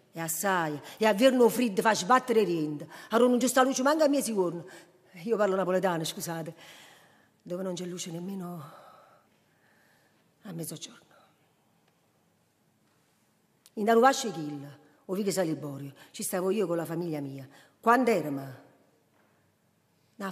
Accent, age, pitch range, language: native, 40-59, 165-220 Hz, Italian